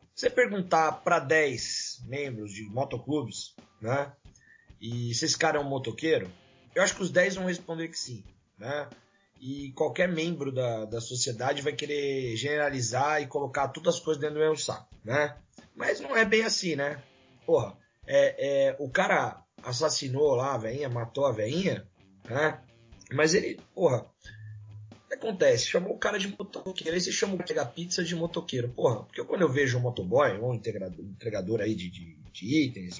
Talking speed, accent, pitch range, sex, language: 180 wpm, Brazilian, 120-160 Hz, male, Portuguese